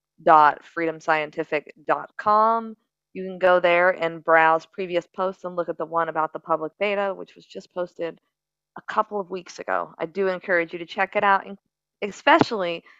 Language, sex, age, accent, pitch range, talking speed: English, female, 40-59, American, 165-195 Hz, 185 wpm